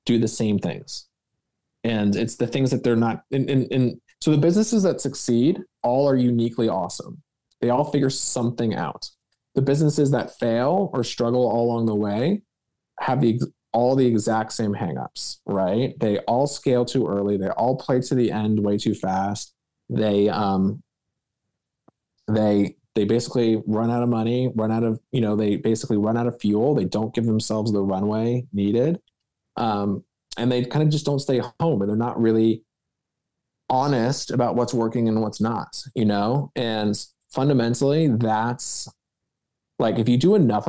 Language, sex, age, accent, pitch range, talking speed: English, male, 20-39, American, 110-130 Hz, 170 wpm